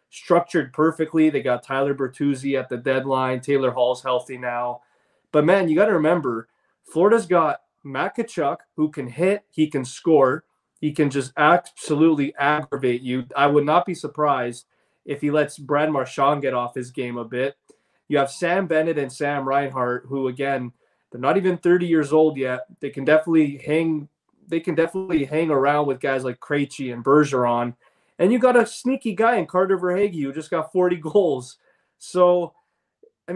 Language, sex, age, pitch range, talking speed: English, male, 20-39, 135-165 Hz, 175 wpm